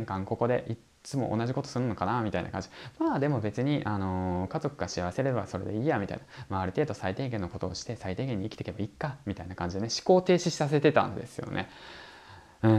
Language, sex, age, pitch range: Japanese, male, 20-39, 95-140 Hz